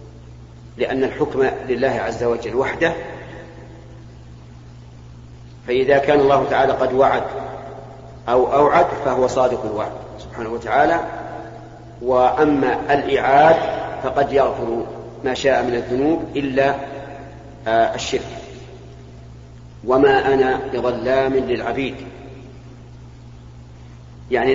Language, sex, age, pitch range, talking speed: Arabic, male, 40-59, 115-145 Hz, 85 wpm